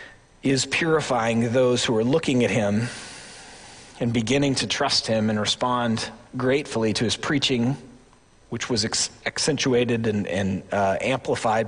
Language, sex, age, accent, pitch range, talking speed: English, male, 40-59, American, 115-160 Hz, 135 wpm